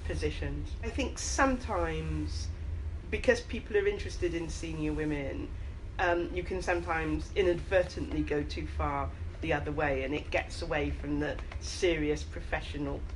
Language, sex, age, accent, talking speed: English, female, 40-59, British, 135 wpm